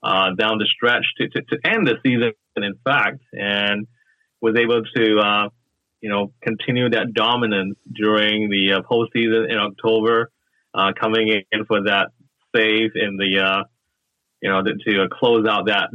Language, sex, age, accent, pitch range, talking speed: English, male, 30-49, American, 100-115 Hz, 175 wpm